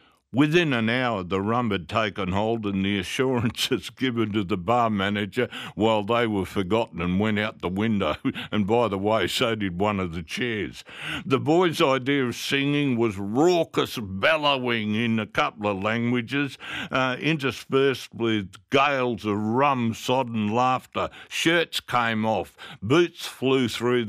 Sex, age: male, 60-79